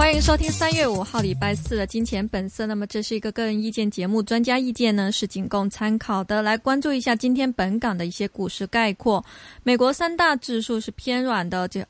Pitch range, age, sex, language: 200-250 Hz, 20-39, female, Chinese